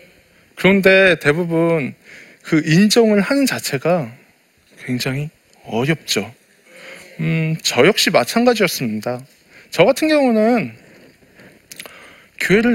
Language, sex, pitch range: Korean, male, 155-245 Hz